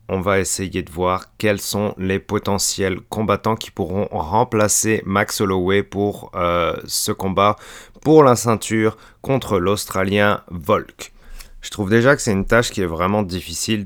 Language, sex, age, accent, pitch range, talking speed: French, male, 30-49, French, 95-110 Hz, 155 wpm